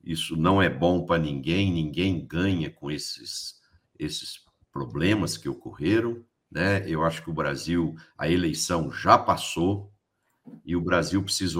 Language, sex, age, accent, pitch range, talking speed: Portuguese, male, 60-79, Brazilian, 90-135 Hz, 145 wpm